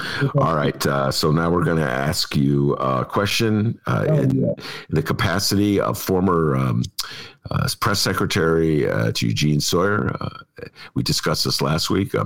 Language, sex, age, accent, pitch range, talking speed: English, male, 50-69, American, 80-130 Hz, 160 wpm